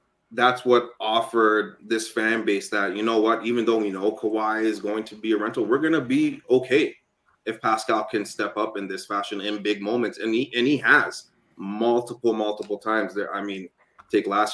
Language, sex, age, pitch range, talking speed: English, male, 30-49, 100-120 Hz, 200 wpm